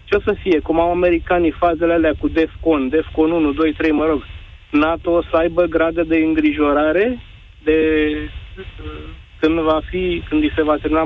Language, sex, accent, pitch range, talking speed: Romanian, male, native, 135-220 Hz, 180 wpm